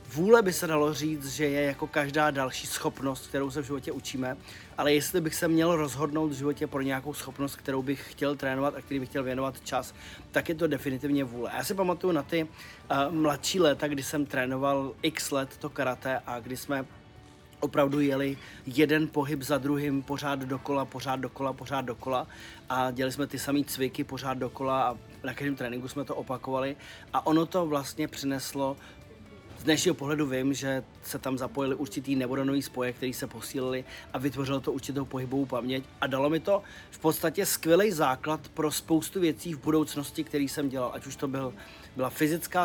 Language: Czech